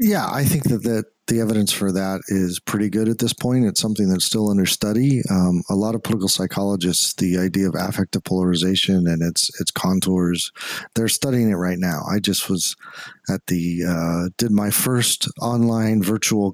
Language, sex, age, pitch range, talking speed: English, male, 40-59, 95-115 Hz, 190 wpm